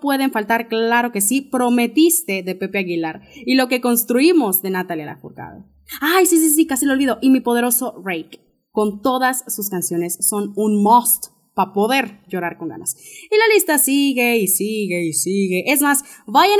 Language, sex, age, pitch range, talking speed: Spanish, female, 20-39, 195-285 Hz, 180 wpm